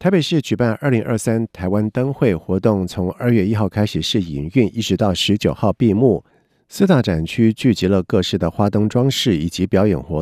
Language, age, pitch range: Chinese, 50-69, 95-120 Hz